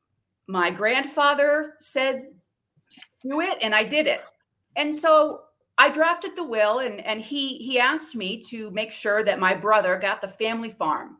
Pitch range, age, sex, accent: 190-265 Hz, 40-59, female, American